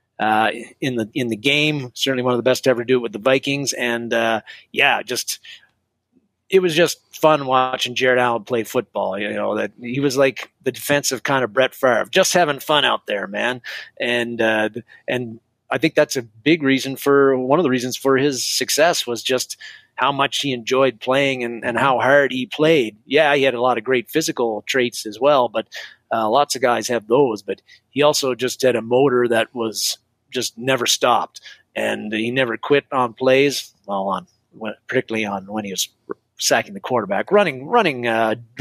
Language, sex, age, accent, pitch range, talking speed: English, male, 30-49, American, 120-140 Hz, 200 wpm